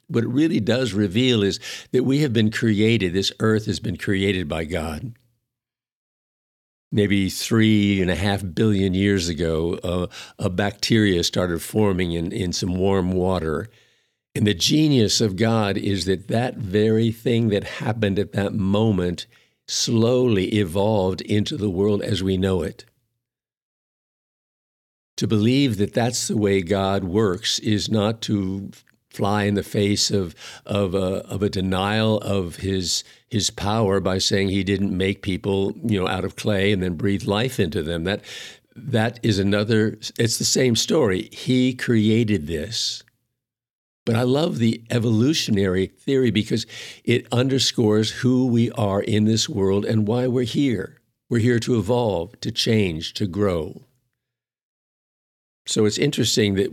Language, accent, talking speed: English, American, 150 wpm